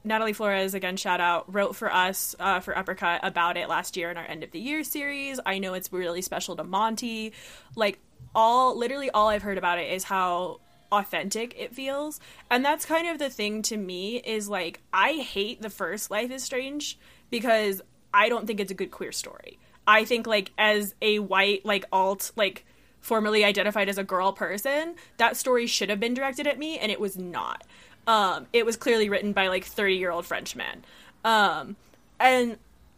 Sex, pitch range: female, 195-250 Hz